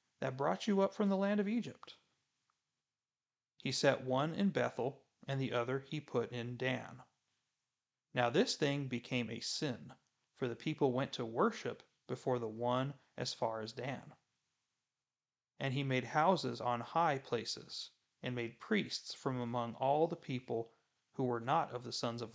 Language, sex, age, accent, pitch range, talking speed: English, male, 30-49, American, 120-150 Hz, 165 wpm